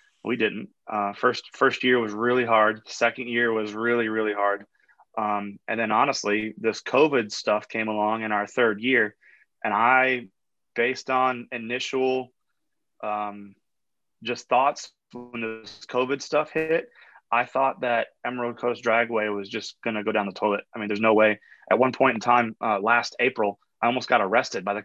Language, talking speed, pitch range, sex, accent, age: English, 180 wpm, 105-125 Hz, male, American, 20-39